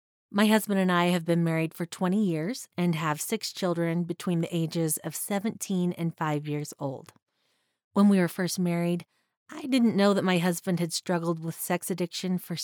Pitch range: 160-195 Hz